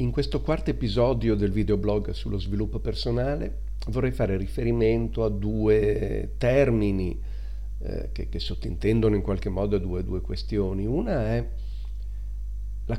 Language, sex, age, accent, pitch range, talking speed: Italian, male, 50-69, native, 90-120 Hz, 130 wpm